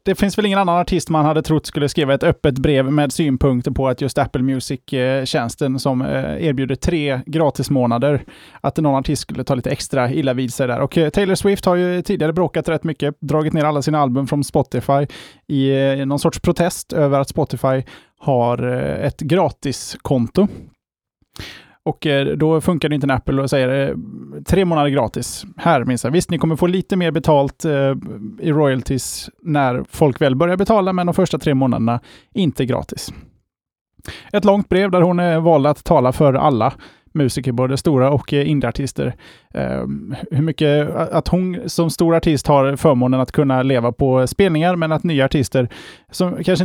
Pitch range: 135-165 Hz